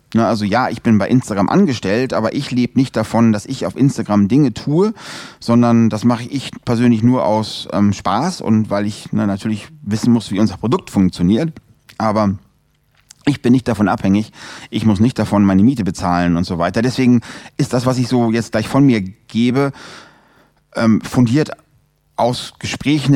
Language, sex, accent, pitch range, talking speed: German, male, German, 100-125 Hz, 175 wpm